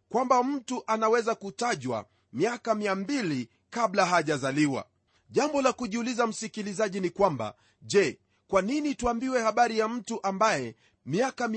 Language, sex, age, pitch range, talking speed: Swahili, male, 40-59, 155-245 Hz, 120 wpm